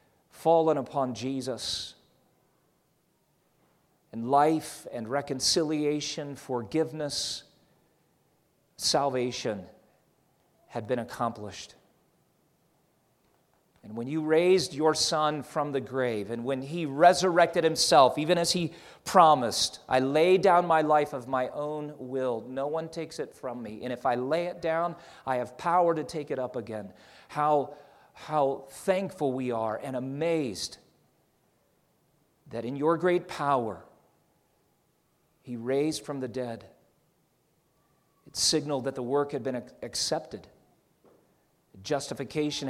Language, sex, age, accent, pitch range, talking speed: English, male, 40-59, American, 125-155 Hz, 120 wpm